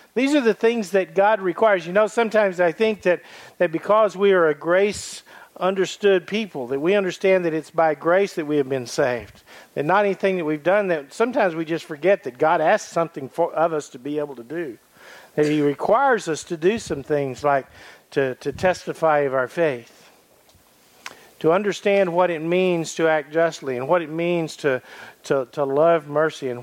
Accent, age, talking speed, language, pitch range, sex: American, 50-69, 200 wpm, English, 135-180 Hz, male